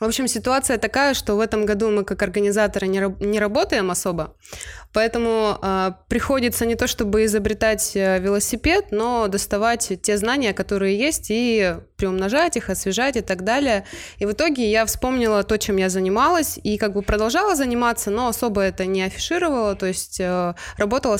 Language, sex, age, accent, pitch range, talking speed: Russian, female, 20-39, native, 190-230 Hz, 165 wpm